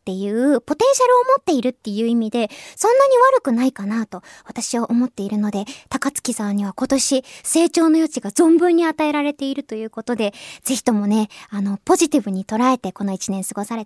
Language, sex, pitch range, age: Japanese, male, 220-340 Hz, 20-39